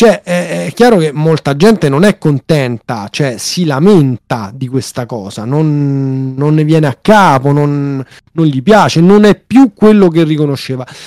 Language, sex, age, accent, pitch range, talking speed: Italian, male, 30-49, native, 140-190 Hz, 175 wpm